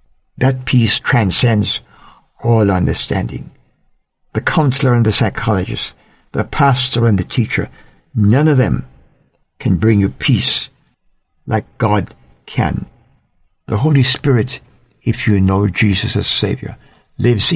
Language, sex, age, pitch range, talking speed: English, male, 60-79, 90-125 Hz, 120 wpm